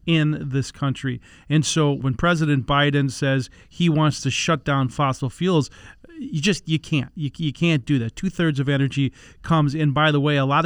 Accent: American